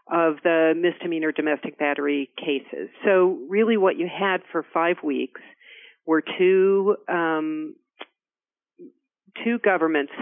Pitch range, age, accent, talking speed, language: 145-195 Hz, 40-59, American, 110 wpm, English